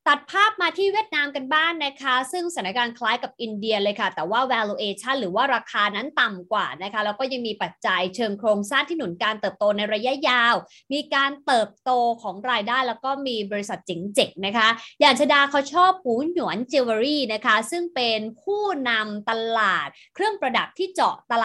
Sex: female